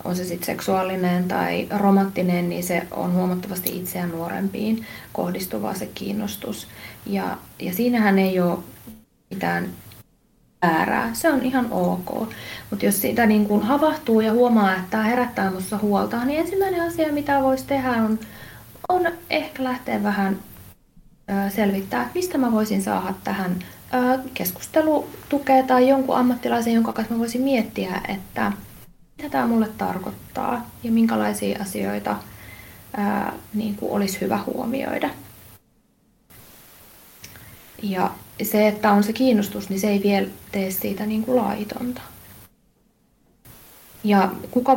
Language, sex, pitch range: Finnish, female, 190-250 Hz